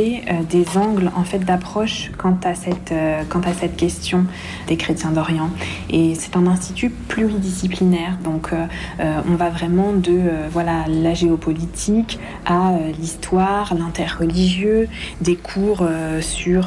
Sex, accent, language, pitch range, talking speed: female, French, French, 165-185 Hz, 140 wpm